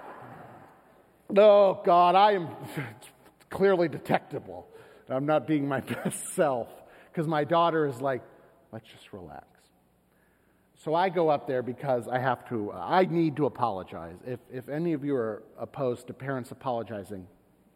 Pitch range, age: 130-180 Hz, 40-59